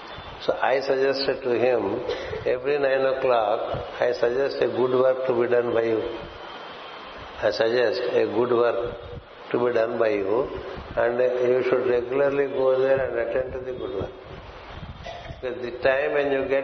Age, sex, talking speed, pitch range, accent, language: 60-79, male, 165 wpm, 120-145 Hz, native, Telugu